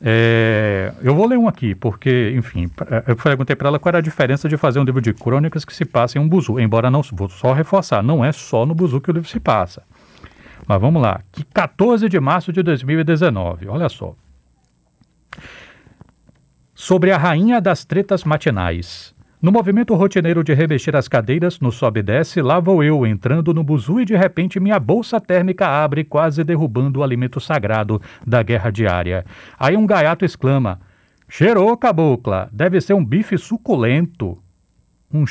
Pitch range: 120-185 Hz